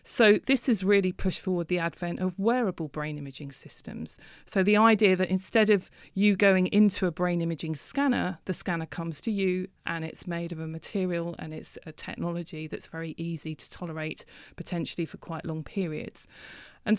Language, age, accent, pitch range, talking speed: English, 40-59, British, 170-210 Hz, 185 wpm